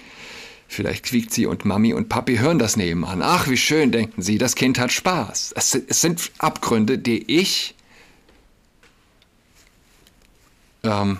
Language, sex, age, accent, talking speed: German, male, 60-79, German, 140 wpm